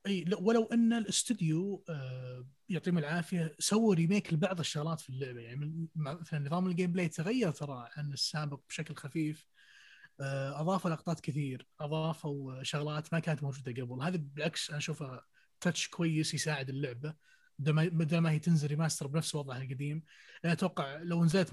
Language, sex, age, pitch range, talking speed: Arabic, male, 20-39, 145-180 Hz, 150 wpm